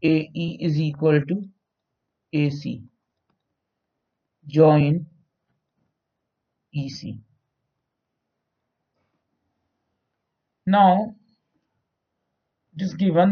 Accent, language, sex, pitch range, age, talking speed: native, Hindi, male, 130-180 Hz, 50-69, 50 wpm